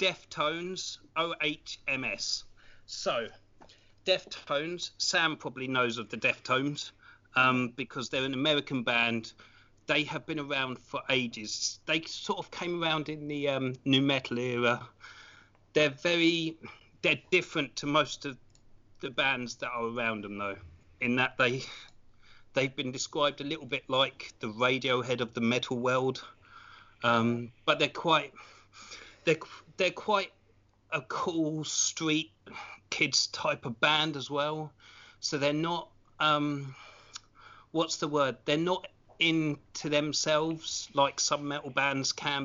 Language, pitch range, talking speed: English, 115-150 Hz, 140 wpm